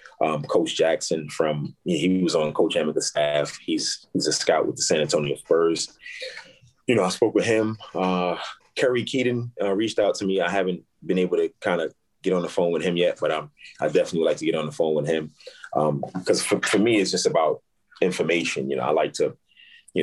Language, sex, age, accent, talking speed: English, male, 30-49, American, 225 wpm